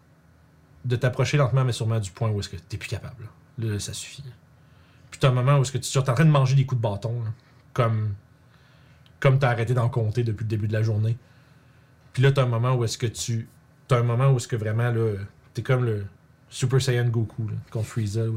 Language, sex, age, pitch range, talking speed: French, male, 30-49, 115-140 Hz, 250 wpm